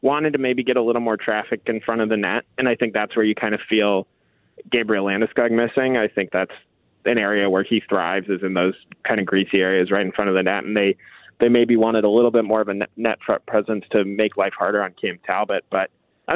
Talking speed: 250 wpm